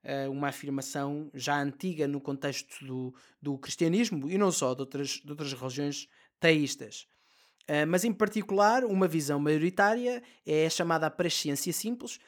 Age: 20-39